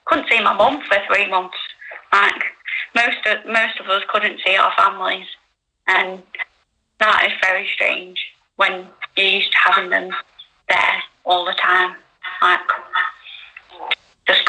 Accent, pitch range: British, 195-230 Hz